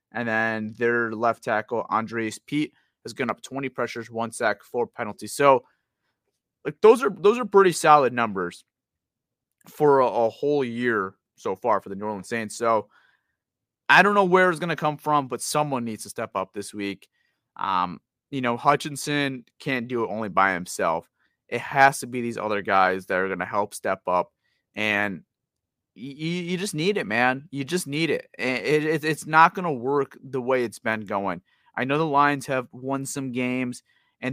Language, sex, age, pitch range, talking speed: English, male, 30-49, 110-145 Hz, 190 wpm